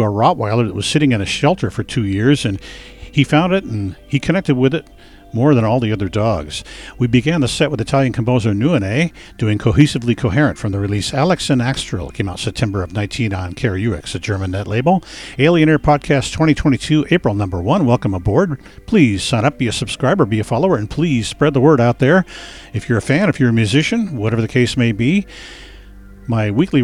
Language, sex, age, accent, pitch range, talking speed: English, male, 50-69, American, 105-140 Hz, 210 wpm